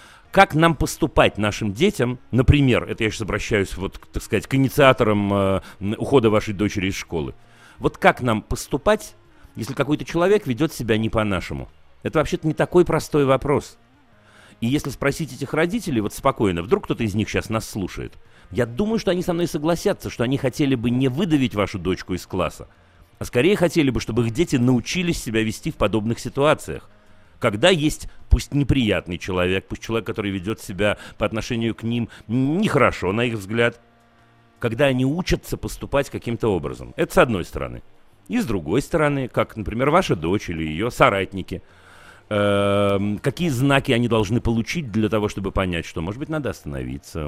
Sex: male